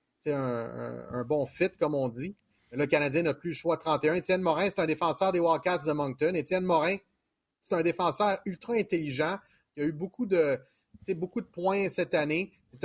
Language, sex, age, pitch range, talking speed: French, male, 30-49, 140-180 Hz, 205 wpm